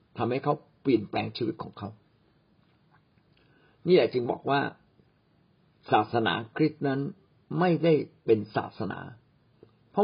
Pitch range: 120-170 Hz